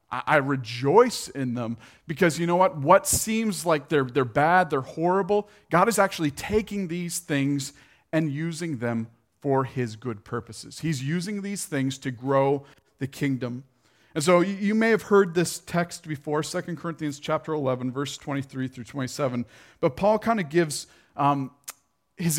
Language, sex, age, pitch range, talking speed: English, male, 40-59, 130-170 Hz, 165 wpm